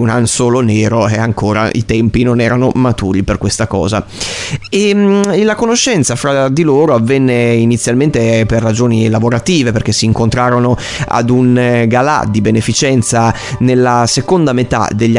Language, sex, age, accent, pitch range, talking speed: Italian, male, 30-49, native, 110-120 Hz, 145 wpm